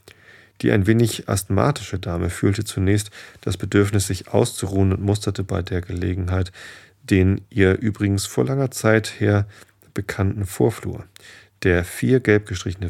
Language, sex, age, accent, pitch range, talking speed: German, male, 40-59, German, 95-105 Hz, 135 wpm